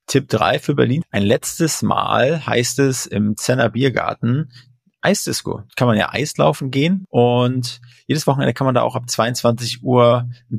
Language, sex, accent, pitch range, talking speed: German, male, German, 110-130 Hz, 170 wpm